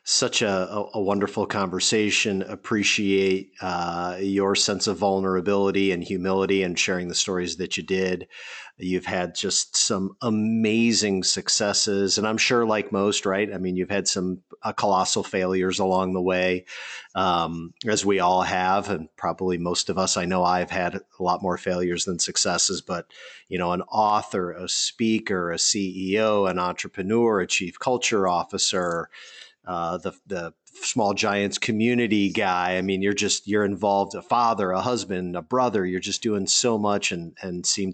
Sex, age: male, 50-69